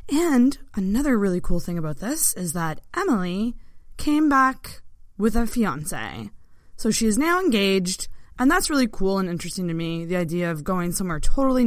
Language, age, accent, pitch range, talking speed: English, 20-39, American, 165-235 Hz, 175 wpm